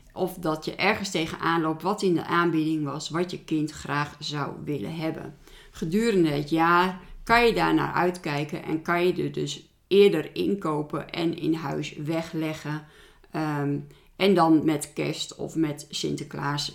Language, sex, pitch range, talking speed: Dutch, female, 160-200 Hz, 160 wpm